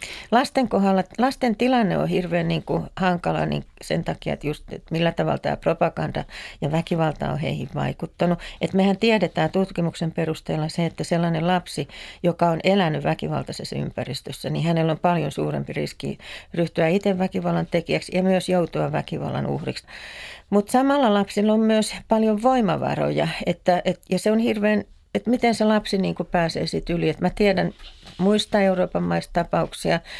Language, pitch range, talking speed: Finnish, 170-205 Hz, 145 wpm